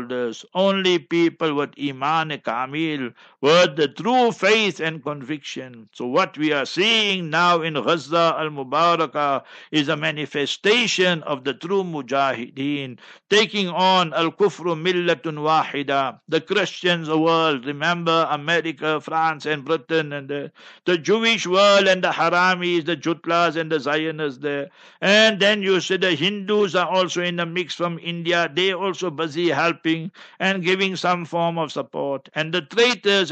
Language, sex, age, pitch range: English, male, 60-79, 150-185 Hz